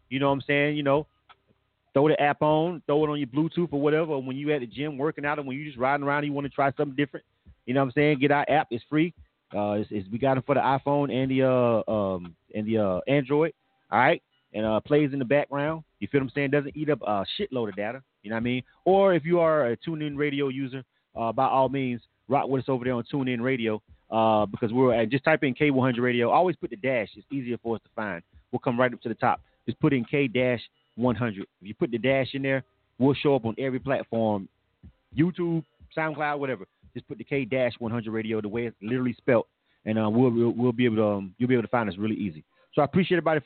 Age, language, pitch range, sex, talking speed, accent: 30-49, English, 120-150 Hz, male, 255 wpm, American